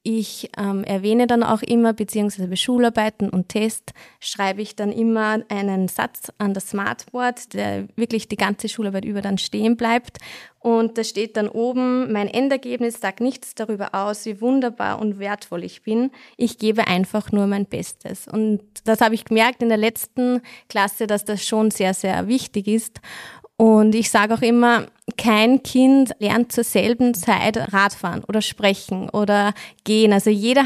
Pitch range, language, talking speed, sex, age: 205-240 Hz, German, 170 wpm, female, 20-39